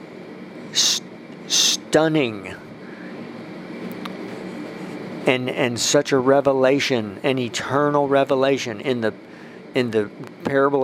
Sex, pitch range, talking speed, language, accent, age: male, 115-135 Hz, 80 wpm, English, American, 50-69